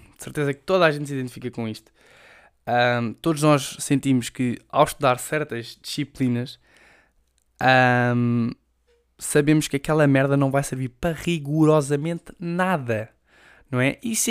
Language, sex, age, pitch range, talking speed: Portuguese, male, 20-39, 130-180 Hz, 140 wpm